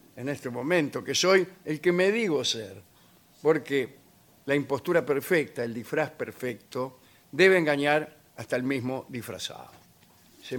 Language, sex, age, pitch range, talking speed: Spanish, male, 50-69, 125-160 Hz, 135 wpm